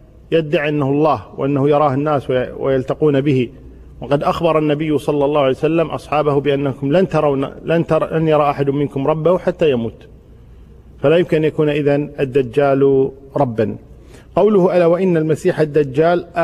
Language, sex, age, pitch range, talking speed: Arabic, male, 40-59, 130-165 Hz, 140 wpm